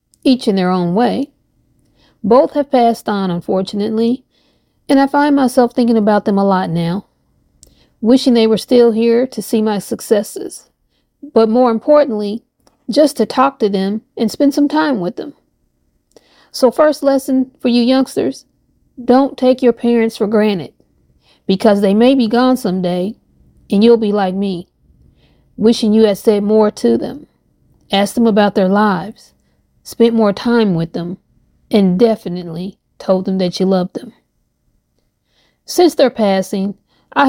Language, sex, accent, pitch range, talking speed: English, female, American, 200-245 Hz, 155 wpm